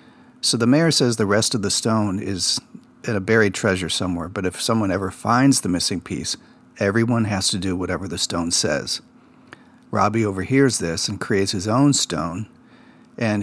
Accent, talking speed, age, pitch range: American, 180 wpm, 50-69, 95-120 Hz